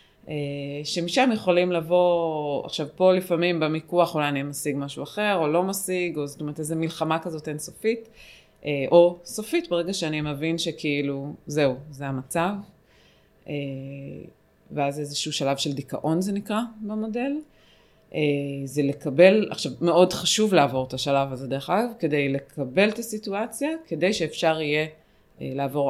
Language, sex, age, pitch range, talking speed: English, female, 20-39, 145-180 Hz, 95 wpm